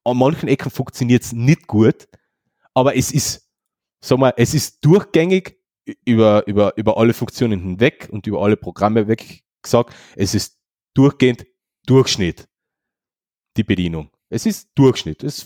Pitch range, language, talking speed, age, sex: 105-150 Hz, German, 145 wpm, 30-49, male